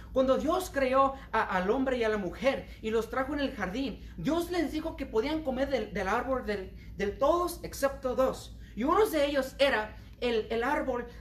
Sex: male